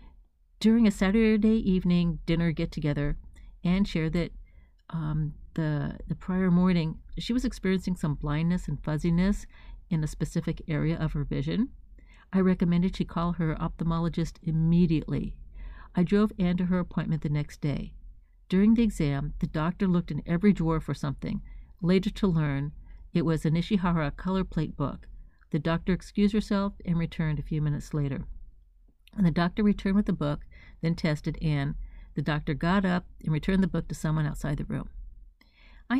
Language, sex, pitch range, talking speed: English, female, 150-185 Hz, 165 wpm